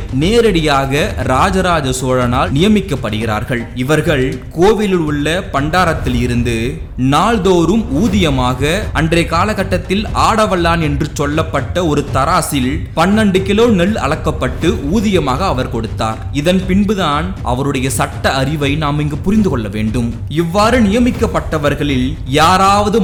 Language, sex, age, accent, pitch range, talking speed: Tamil, male, 20-39, native, 120-180 Hz, 95 wpm